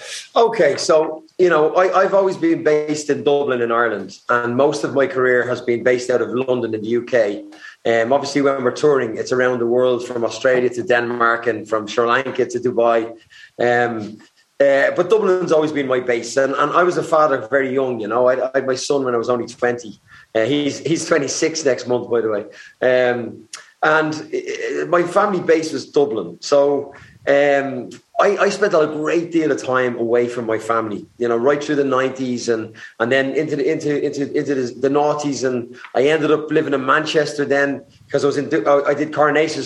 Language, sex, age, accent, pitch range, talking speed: English, male, 30-49, Irish, 125-155 Hz, 205 wpm